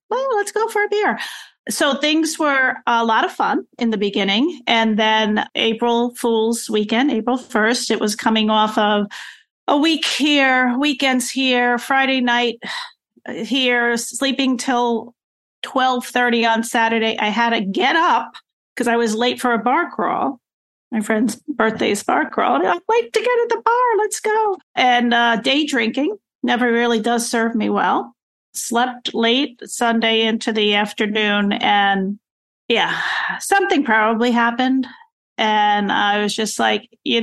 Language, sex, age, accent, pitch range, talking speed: English, female, 40-59, American, 210-265 Hz, 155 wpm